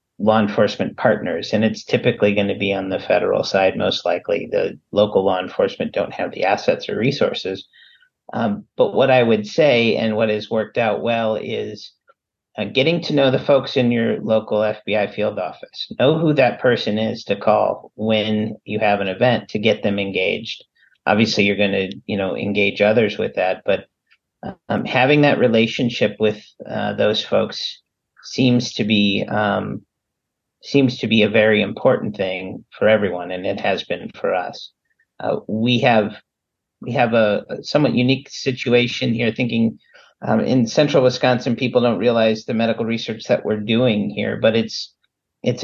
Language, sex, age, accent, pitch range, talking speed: English, male, 40-59, American, 105-130 Hz, 175 wpm